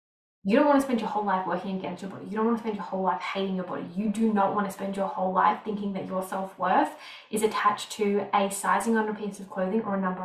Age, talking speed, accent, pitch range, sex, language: 10-29, 285 wpm, Australian, 195-225 Hz, female, English